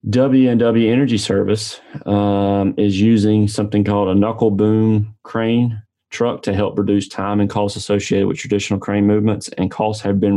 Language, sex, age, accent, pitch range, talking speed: English, male, 30-49, American, 100-115 Hz, 160 wpm